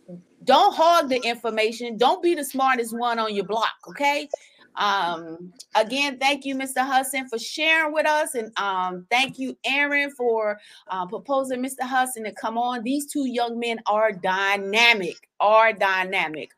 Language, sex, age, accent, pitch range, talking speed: English, female, 30-49, American, 190-250 Hz, 160 wpm